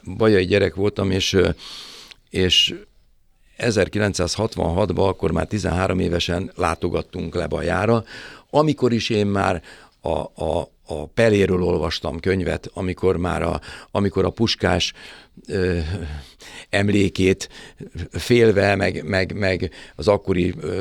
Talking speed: 105 wpm